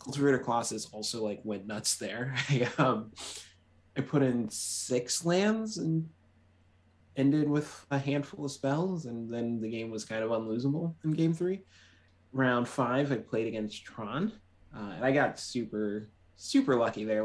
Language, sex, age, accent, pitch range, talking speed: English, male, 20-39, American, 105-125 Hz, 160 wpm